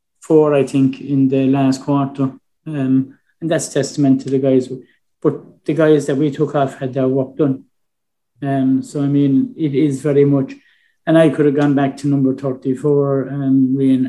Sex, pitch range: male, 130-140 Hz